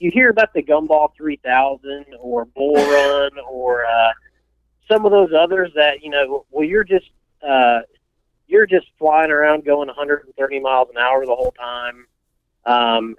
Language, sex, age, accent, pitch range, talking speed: English, male, 40-59, American, 125-170 Hz, 160 wpm